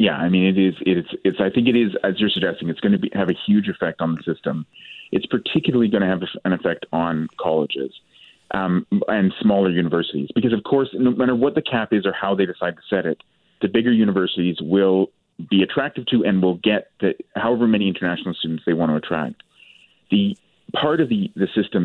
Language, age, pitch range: English, 30-49, 90-115 Hz